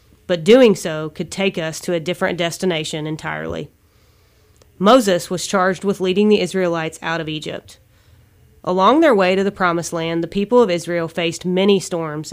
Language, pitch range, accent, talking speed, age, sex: English, 160-195 Hz, American, 170 wpm, 30-49, female